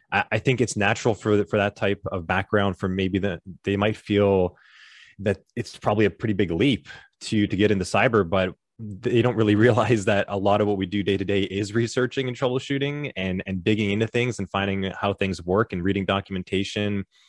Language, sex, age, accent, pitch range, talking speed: English, male, 20-39, American, 95-115 Hz, 210 wpm